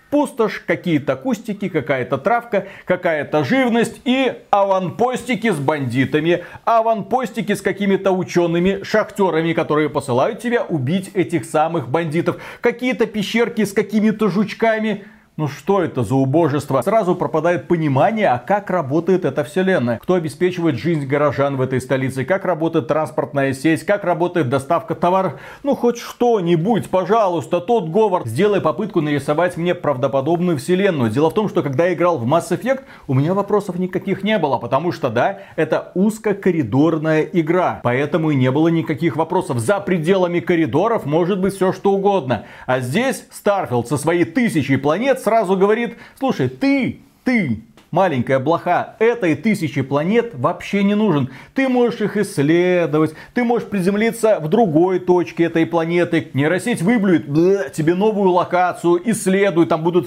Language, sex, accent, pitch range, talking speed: Russian, male, native, 155-205 Hz, 145 wpm